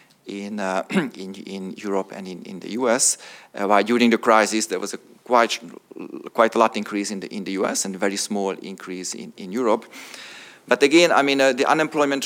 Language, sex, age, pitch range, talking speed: English, male, 40-59, 105-125 Hz, 220 wpm